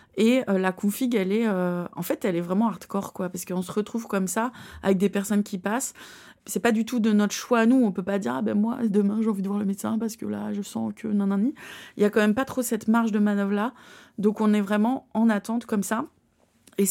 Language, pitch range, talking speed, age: French, 195-225 Hz, 265 wpm, 20-39